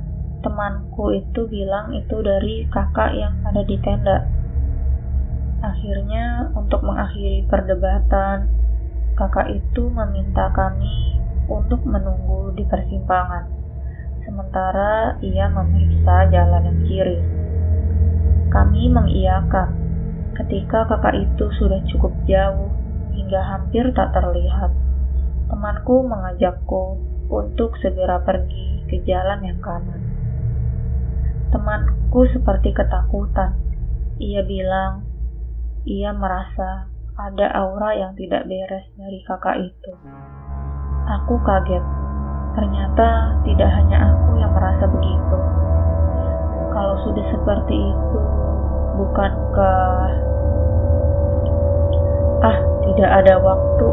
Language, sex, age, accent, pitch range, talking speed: Indonesian, female, 20-39, native, 65-85 Hz, 90 wpm